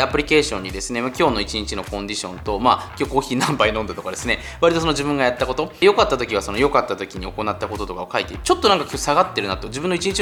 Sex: male